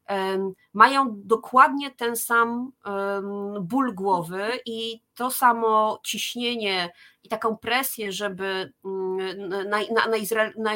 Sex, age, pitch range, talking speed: female, 30-49, 195-235 Hz, 85 wpm